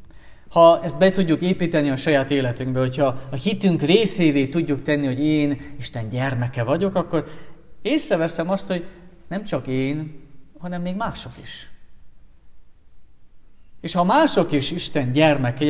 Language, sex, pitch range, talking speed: Hungarian, male, 130-170 Hz, 140 wpm